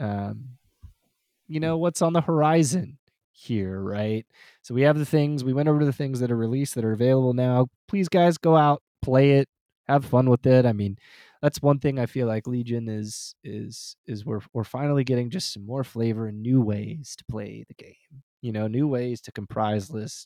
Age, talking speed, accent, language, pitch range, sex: 20-39, 205 wpm, American, English, 110-170 Hz, male